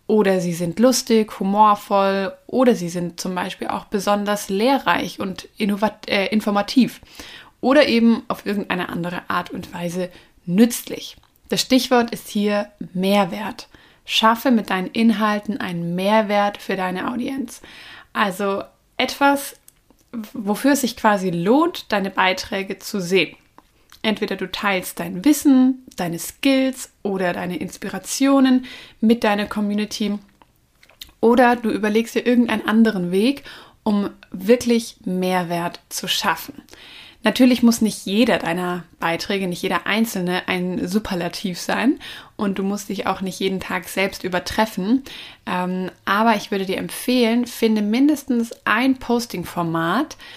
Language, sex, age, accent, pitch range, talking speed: German, female, 20-39, German, 190-235 Hz, 125 wpm